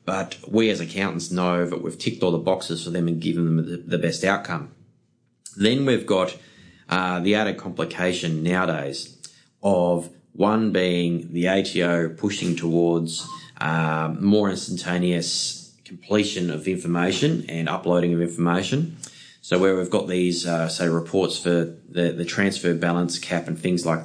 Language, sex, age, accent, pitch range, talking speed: English, male, 20-39, Australian, 85-95 Hz, 150 wpm